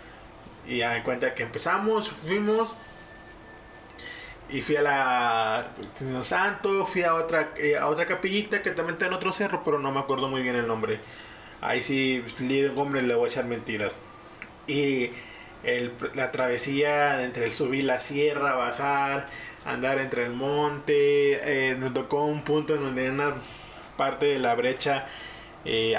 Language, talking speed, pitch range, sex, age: Spanish, 160 wpm, 120-150 Hz, male, 20-39